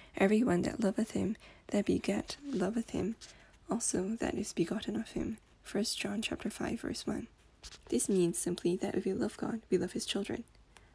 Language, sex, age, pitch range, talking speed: English, female, 10-29, 175-220 Hz, 175 wpm